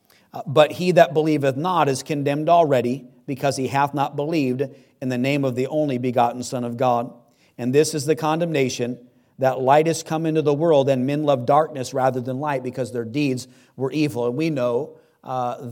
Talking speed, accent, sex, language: 195 wpm, American, male, English